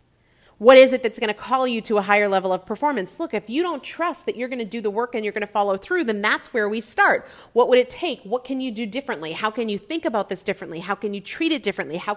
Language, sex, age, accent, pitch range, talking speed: English, female, 30-49, American, 195-280 Hz, 295 wpm